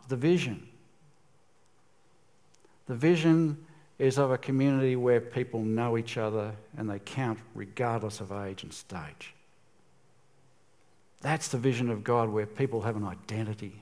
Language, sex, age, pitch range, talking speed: English, male, 60-79, 115-155 Hz, 135 wpm